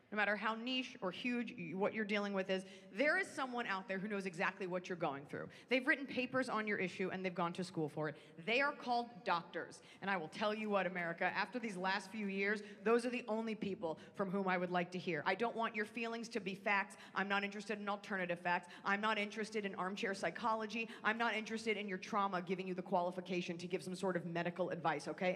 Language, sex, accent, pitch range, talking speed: English, female, American, 180-220 Hz, 240 wpm